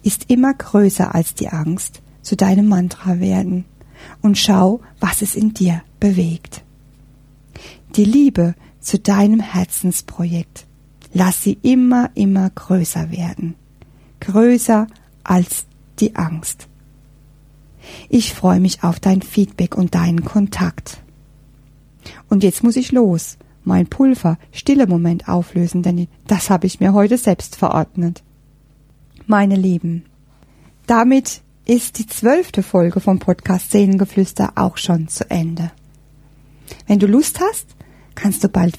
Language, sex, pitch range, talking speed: German, female, 150-200 Hz, 125 wpm